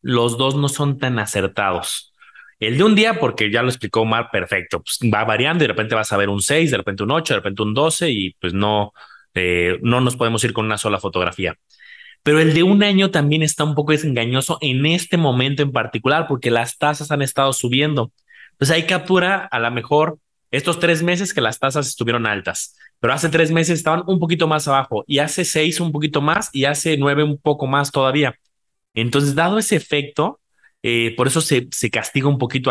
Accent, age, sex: Mexican, 20-39, male